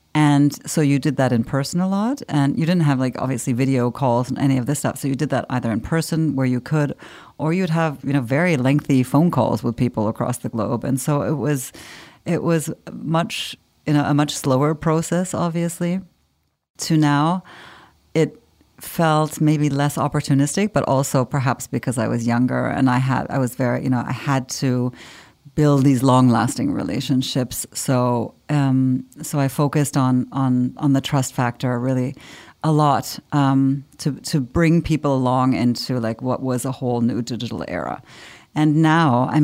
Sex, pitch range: female, 130-150 Hz